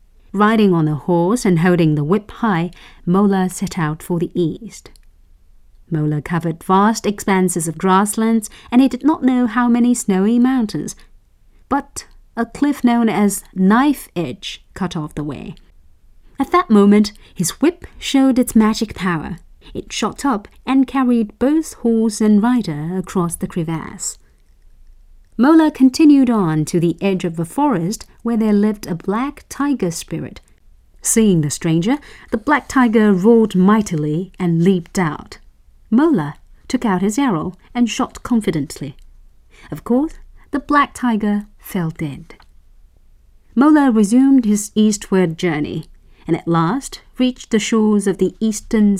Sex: female